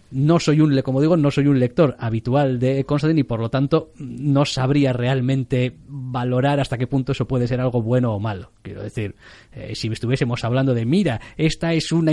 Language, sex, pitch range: Spanish, male, 115-150 Hz